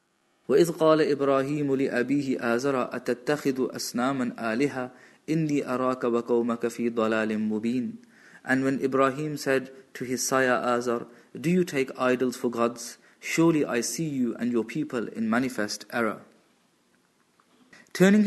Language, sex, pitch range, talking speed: English, male, 120-155 Hz, 115 wpm